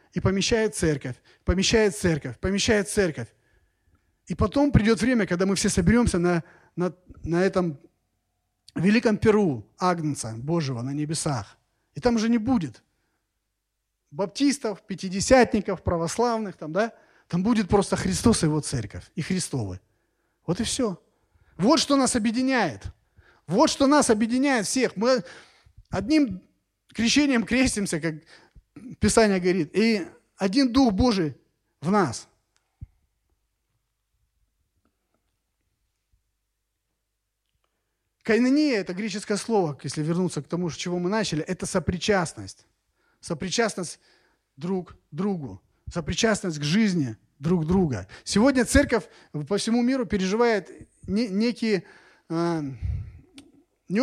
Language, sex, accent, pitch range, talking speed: Russian, male, native, 135-225 Hz, 110 wpm